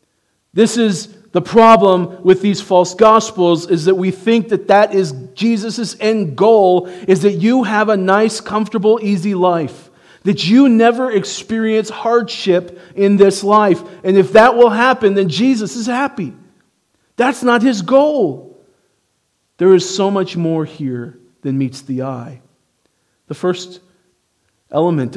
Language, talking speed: English, 145 wpm